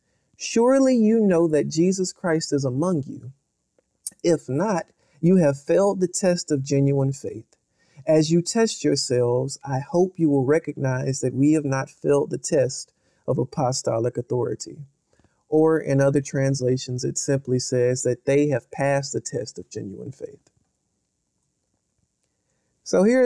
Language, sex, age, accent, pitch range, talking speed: English, male, 40-59, American, 135-165 Hz, 145 wpm